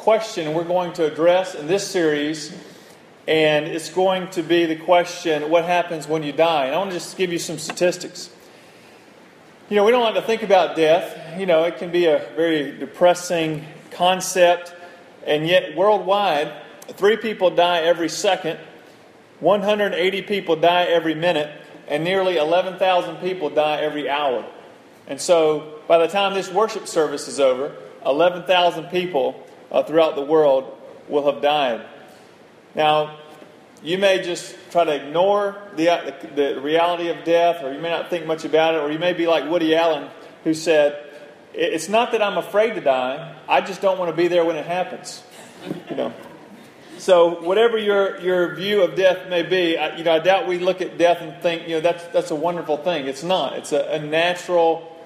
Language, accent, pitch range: English, American, 160-185 Hz